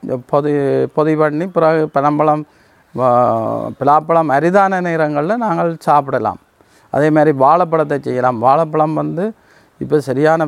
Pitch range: 140-160 Hz